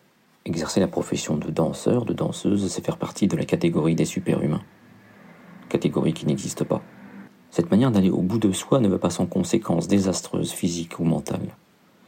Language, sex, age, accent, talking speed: French, male, 50-69, French, 175 wpm